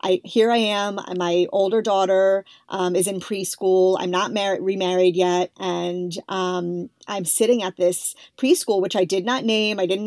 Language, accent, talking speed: English, American, 165 wpm